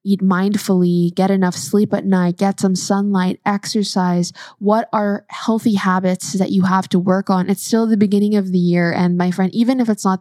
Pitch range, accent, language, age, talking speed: 185-220 Hz, American, English, 10-29, 205 wpm